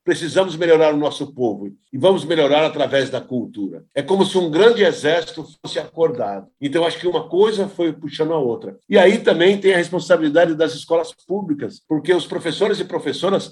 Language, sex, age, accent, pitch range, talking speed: Portuguese, male, 50-69, Brazilian, 145-180 Hz, 185 wpm